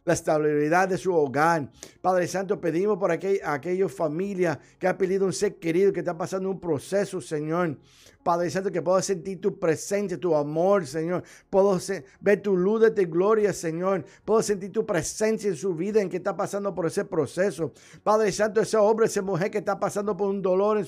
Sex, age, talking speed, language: male, 60-79, 200 wpm, Spanish